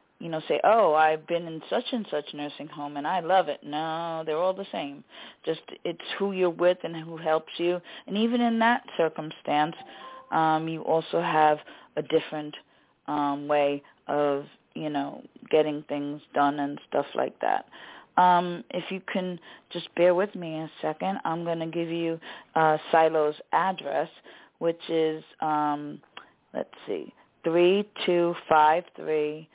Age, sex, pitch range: 40-59, female, 150-175 Hz